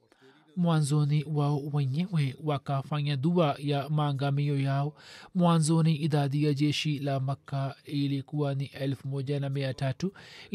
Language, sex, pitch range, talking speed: Swahili, male, 140-155 Hz, 110 wpm